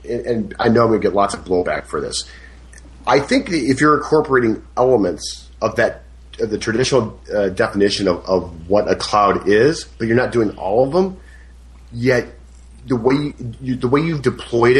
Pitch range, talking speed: 95-130 Hz, 190 wpm